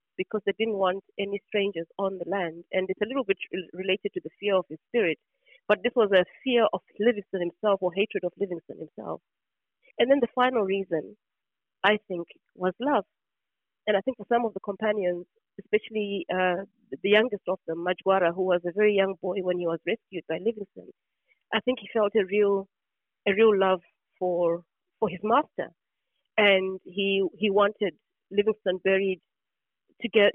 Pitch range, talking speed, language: 180-215 Hz, 180 wpm, English